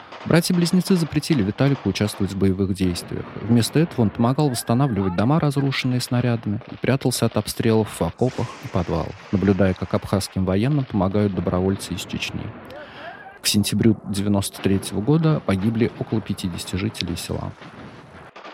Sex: male